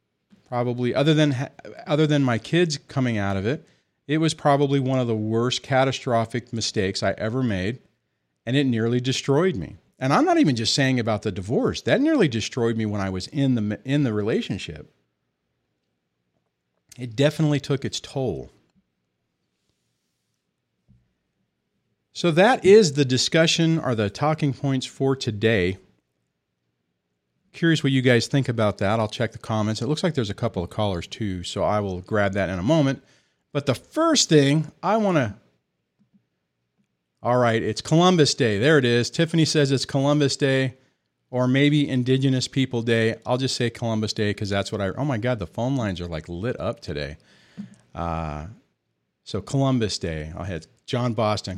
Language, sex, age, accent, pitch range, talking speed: English, male, 40-59, American, 100-140 Hz, 170 wpm